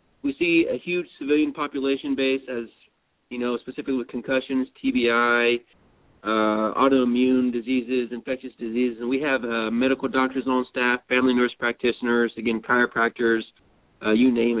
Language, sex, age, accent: English, male, 30-49, American